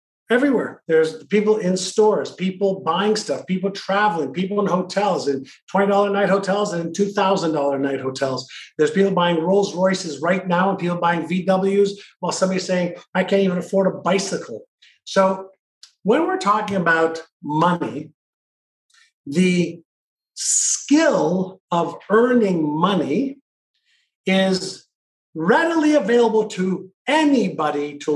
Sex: male